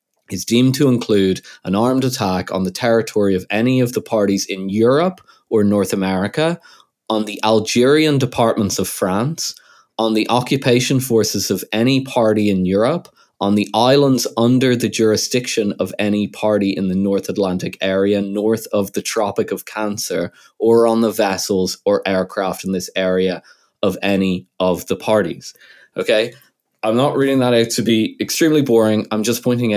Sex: male